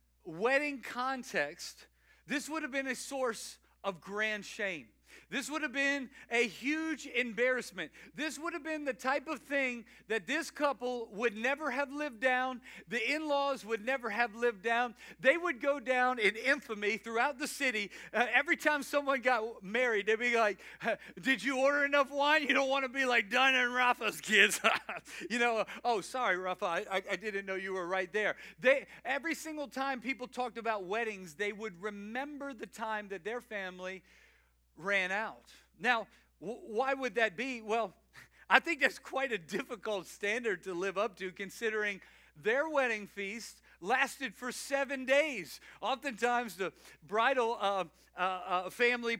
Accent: American